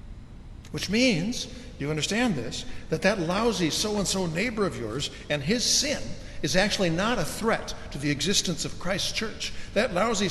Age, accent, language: 60-79, American, English